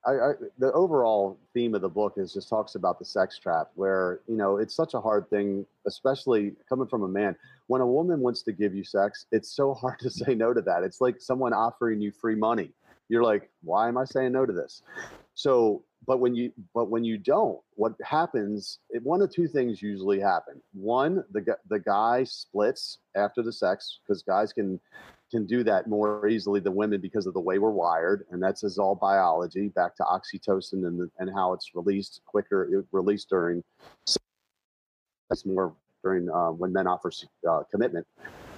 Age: 40-59